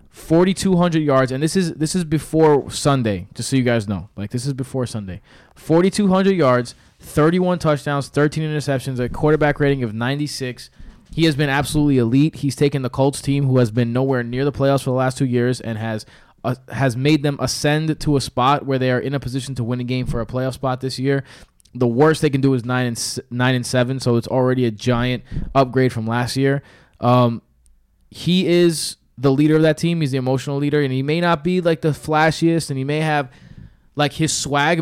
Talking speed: 220 wpm